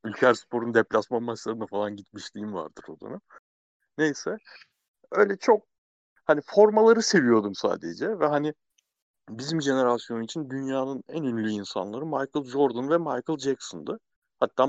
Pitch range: 110-145 Hz